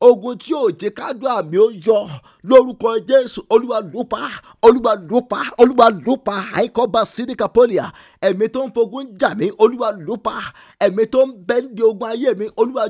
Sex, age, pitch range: male, 50-69, 195-245 Hz